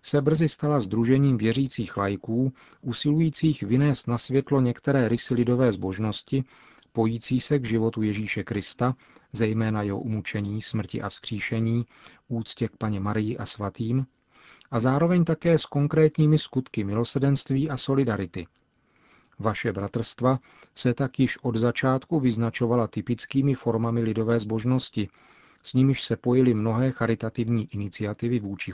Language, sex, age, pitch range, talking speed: Czech, male, 40-59, 110-130 Hz, 125 wpm